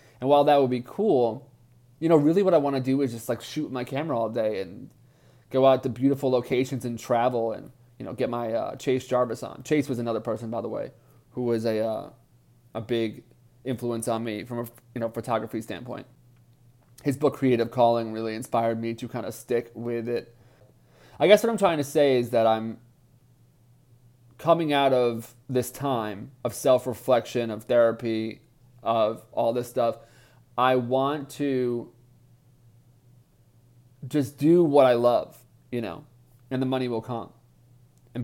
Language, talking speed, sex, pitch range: English, 180 wpm, male, 120-130 Hz